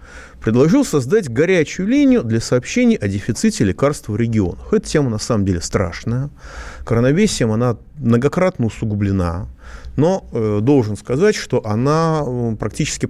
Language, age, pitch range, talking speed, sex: Russian, 30-49, 100-145 Hz, 130 wpm, male